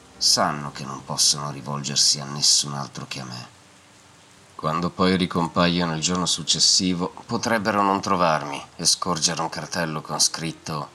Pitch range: 70-85 Hz